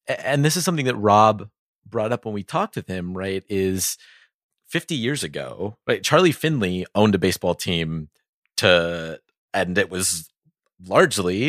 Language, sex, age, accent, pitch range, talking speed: English, male, 30-49, American, 90-110 Hz, 155 wpm